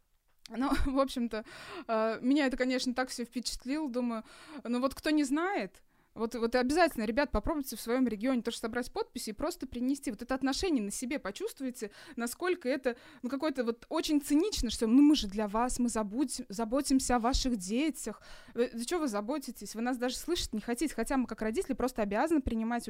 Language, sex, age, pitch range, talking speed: Russian, female, 20-39, 220-275 Hz, 185 wpm